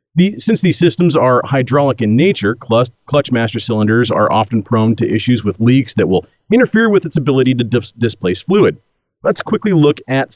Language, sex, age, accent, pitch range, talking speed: English, male, 40-59, American, 120-175 Hz, 180 wpm